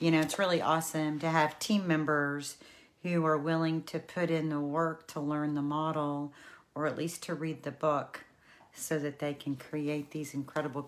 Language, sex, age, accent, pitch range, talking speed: English, female, 40-59, American, 145-180 Hz, 195 wpm